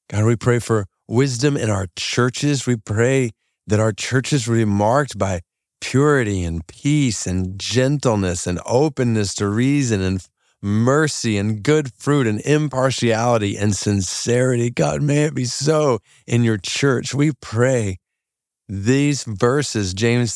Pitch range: 95-120 Hz